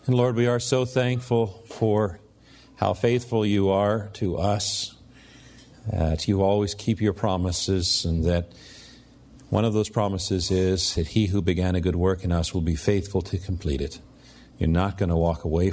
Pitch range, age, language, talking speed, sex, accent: 95-120 Hz, 50-69, English, 185 wpm, male, American